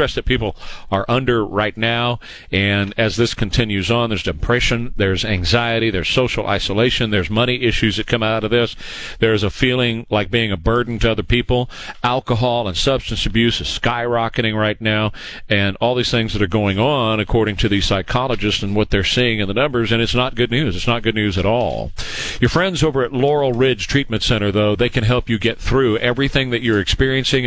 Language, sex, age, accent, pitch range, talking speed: English, male, 40-59, American, 110-125 Hz, 205 wpm